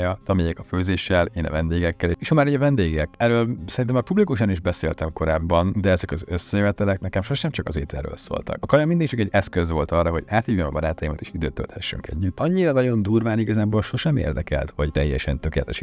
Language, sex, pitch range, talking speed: Hungarian, male, 80-105 Hz, 200 wpm